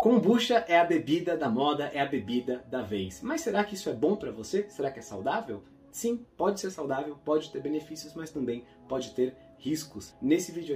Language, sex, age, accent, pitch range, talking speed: Portuguese, male, 20-39, Brazilian, 125-185 Hz, 205 wpm